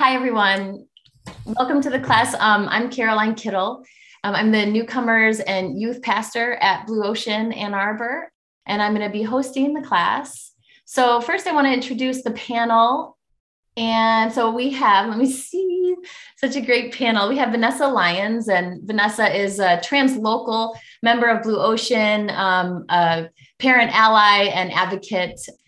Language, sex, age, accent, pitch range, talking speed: English, female, 20-39, American, 185-235 Hz, 155 wpm